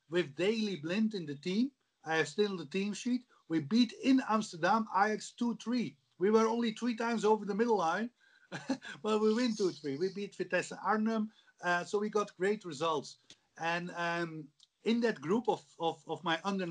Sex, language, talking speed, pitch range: male, English, 185 wpm, 170-215 Hz